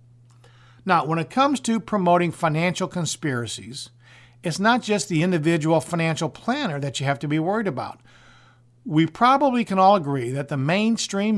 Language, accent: English, American